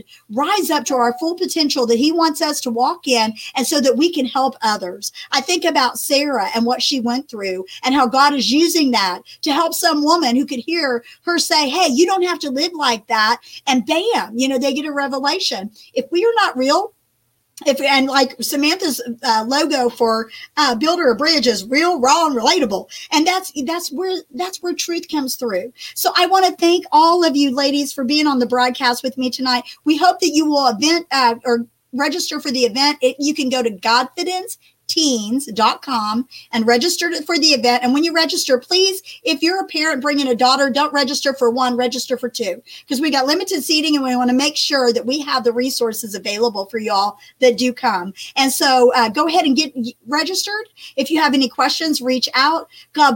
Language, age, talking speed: English, 50-69, 210 wpm